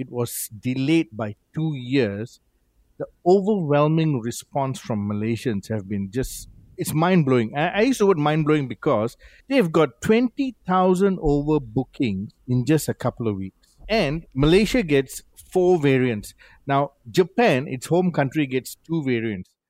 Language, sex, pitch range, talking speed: English, male, 120-170 Hz, 145 wpm